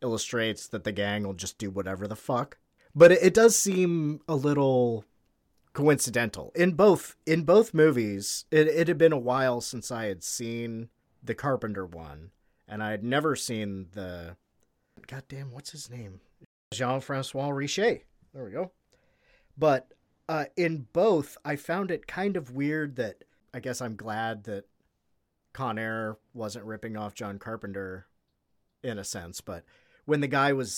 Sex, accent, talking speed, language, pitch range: male, American, 155 wpm, English, 105-140 Hz